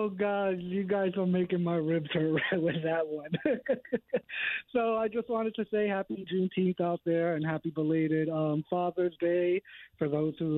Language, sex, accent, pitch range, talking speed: English, male, American, 160-215 Hz, 180 wpm